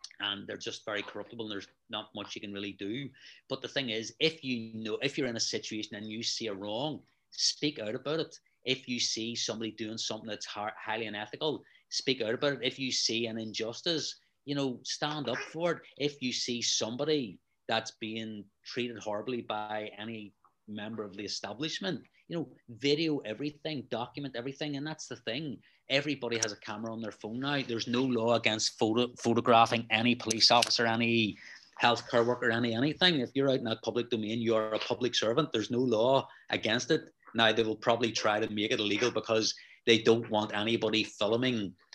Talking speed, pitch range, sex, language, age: 195 wpm, 110-125 Hz, male, English, 30-49